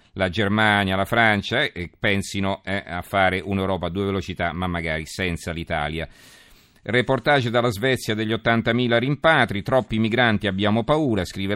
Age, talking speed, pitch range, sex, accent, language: 40-59, 150 wpm, 90-115 Hz, male, native, Italian